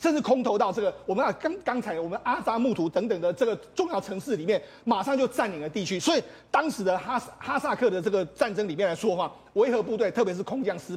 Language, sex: Chinese, male